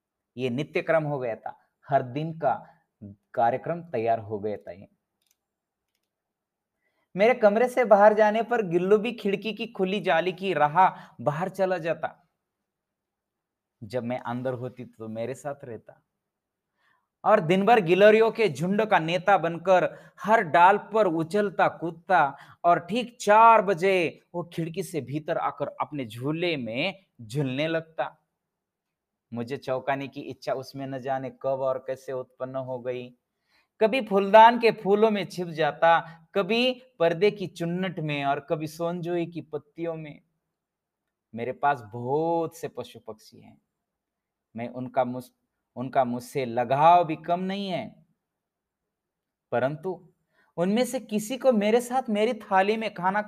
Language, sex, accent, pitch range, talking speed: Hindi, male, native, 140-200 Hz, 140 wpm